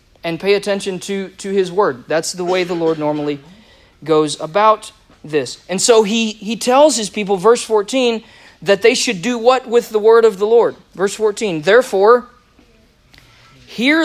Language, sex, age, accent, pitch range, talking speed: English, male, 40-59, American, 175-235 Hz, 170 wpm